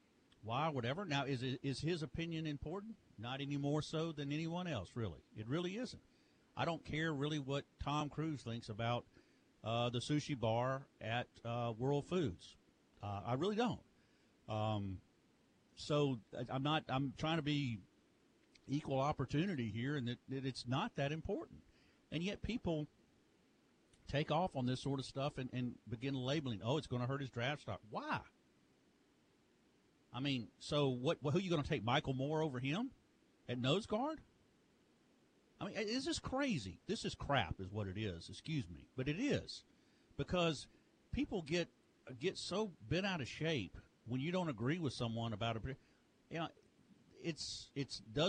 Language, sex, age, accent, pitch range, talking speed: English, male, 50-69, American, 120-155 Hz, 170 wpm